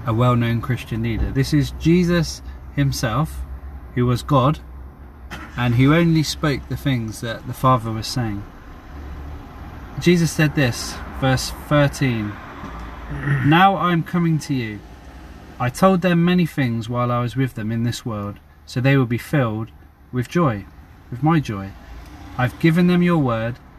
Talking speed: 150 wpm